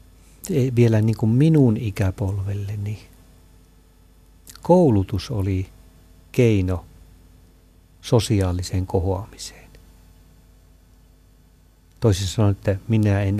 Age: 50-69